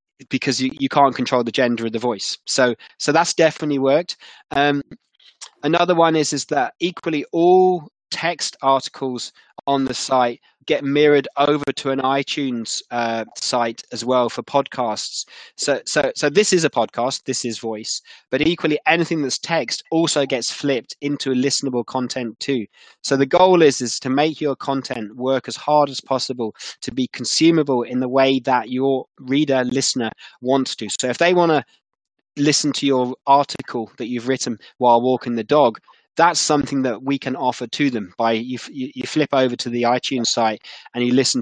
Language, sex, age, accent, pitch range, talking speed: English, male, 20-39, British, 125-145 Hz, 185 wpm